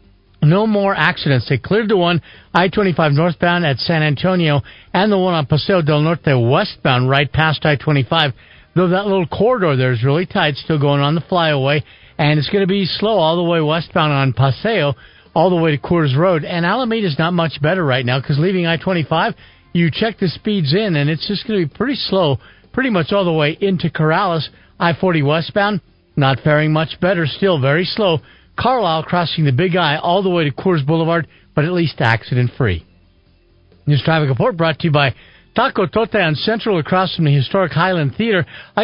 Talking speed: 200 wpm